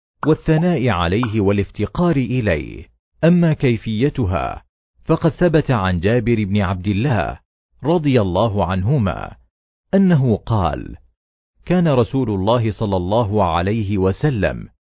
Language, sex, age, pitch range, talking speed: Arabic, male, 40-59, 95-135 Hz, 100 wpm